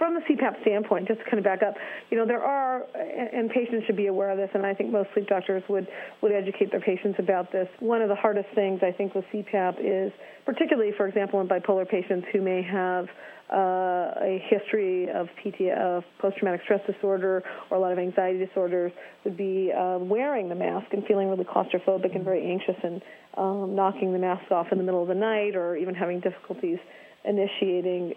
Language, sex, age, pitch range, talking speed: English, female, 40-59, 190-215 Hz, 205 wpm